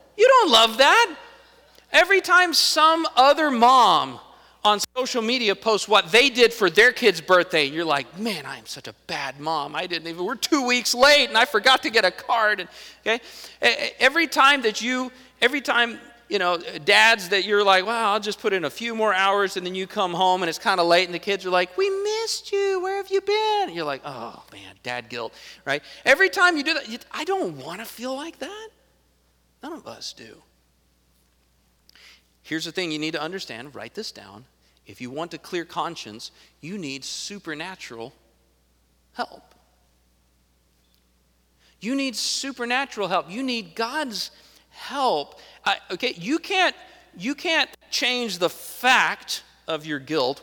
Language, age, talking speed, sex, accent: English, 40-59, 180 wpm, male, American